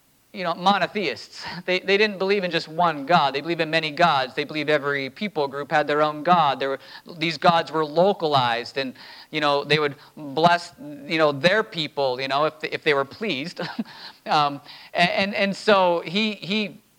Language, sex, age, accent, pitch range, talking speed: English, male, 40-59, American, 155-205 Hz, 195 wpm